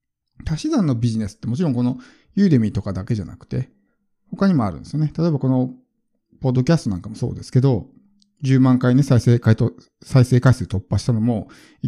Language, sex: Japanese, male